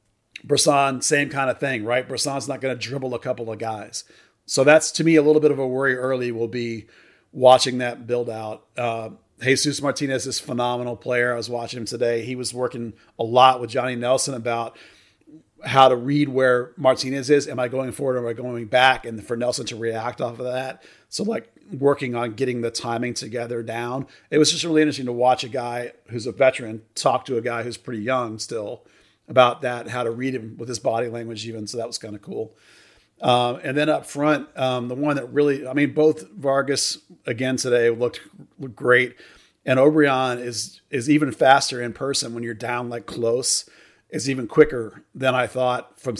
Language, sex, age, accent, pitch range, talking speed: English, male, 40-59, American, 120-135 Hz, 210 wpm